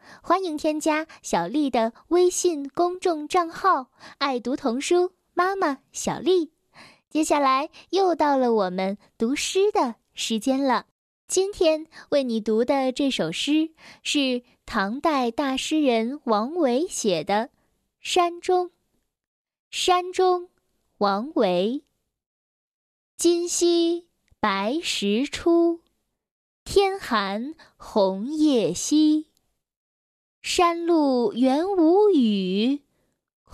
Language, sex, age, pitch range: Chinese, female, 10-29, 240-345 Hz